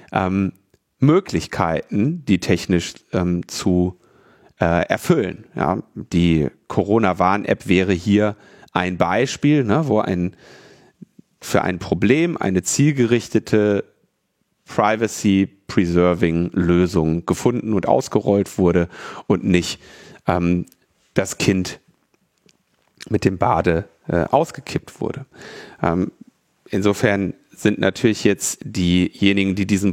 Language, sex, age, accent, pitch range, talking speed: German, male, 40-59, German, 90-115 Hz, 95 wpm